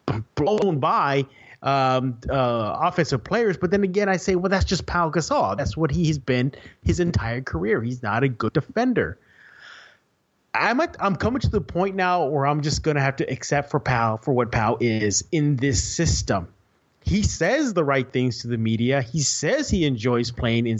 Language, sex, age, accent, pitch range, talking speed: English, male, 30-49, American, 125-165 Hz, 195 wpm